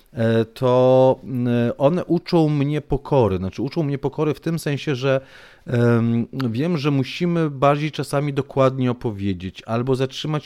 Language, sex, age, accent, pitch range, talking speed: Polish, male, 40-59, native, 125-160 Hz, 125 wpm